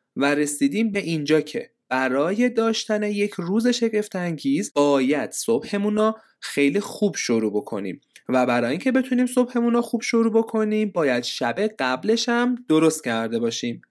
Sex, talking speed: male, 140 wpm